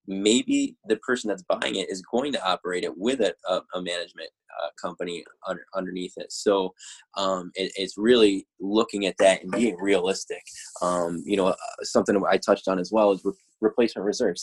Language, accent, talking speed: English, American, 190 wpm